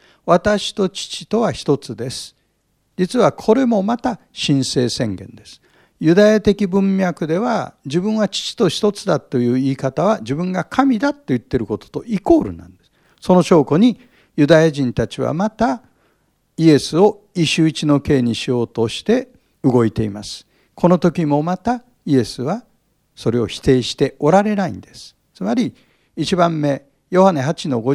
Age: 60-79